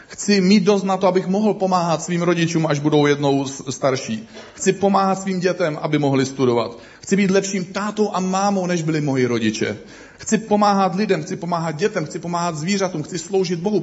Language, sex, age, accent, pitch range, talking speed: Czech, male, 40-59, native, 145-185 Hz, 185 wpm